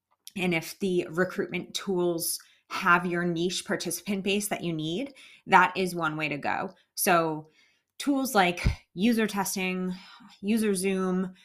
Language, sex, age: English, female, 30-49